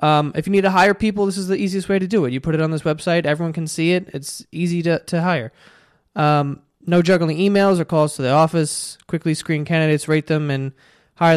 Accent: American